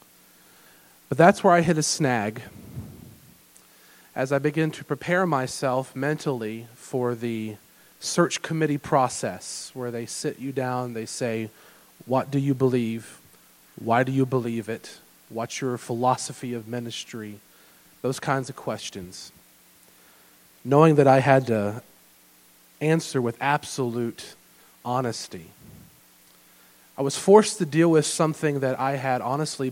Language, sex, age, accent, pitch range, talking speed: English, male, 40-59, American, 115-145 Hz, 130 wpm